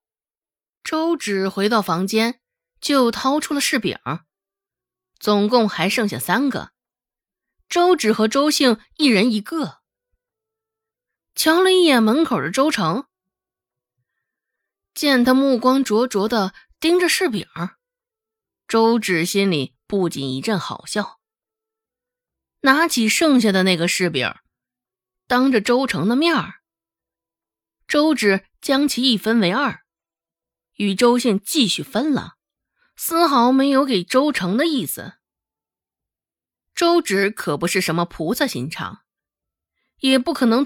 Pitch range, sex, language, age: 180-275 Hz, female, Chinese, 20-39